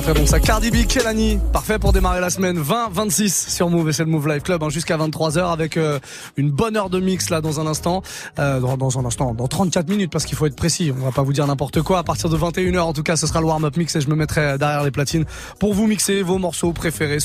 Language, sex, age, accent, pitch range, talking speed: French, male, 20-39, French, 145-185 Hz, 270 wpm